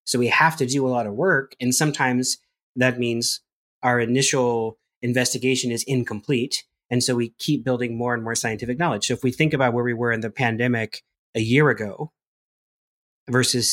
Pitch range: 120-135 Hz